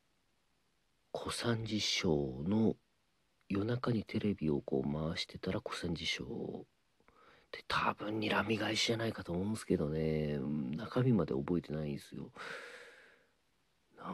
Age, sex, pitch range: 40-59, male, 80-115 Hz